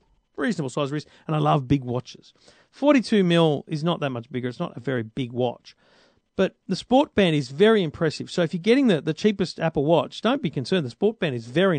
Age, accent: 40-59, Australian